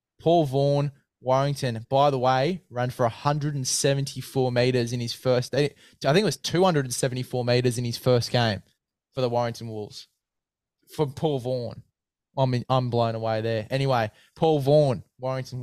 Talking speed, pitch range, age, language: 150 wpm, 115-140 Hz, 20-39, English